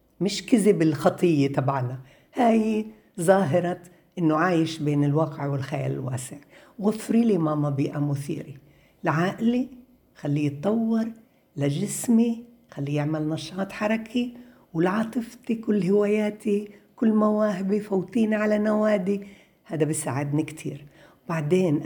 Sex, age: female, 60-79